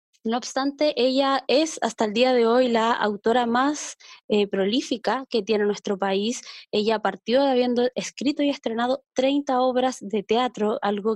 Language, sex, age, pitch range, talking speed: Spanish, female, 20-39, 210-270 Hz, 160 wpm